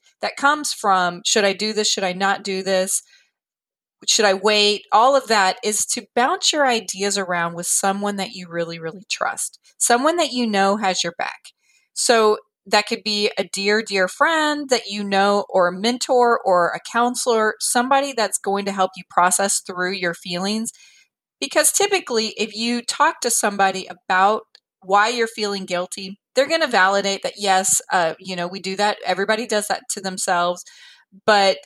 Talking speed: 180 wpm